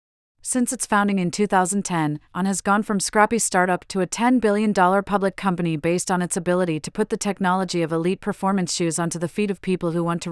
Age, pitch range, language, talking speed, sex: 30-49, 165-200 Hz, English, 215 wpm, female